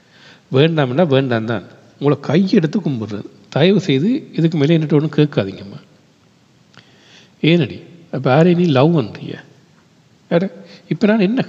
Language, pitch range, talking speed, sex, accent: Tamil, 130-170 Hz, 125 wpm, male, native